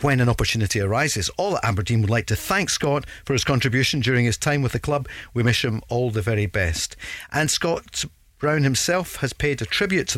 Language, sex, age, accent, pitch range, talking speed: English, male, 40-59, British, 110-145 Hz, 220 wpm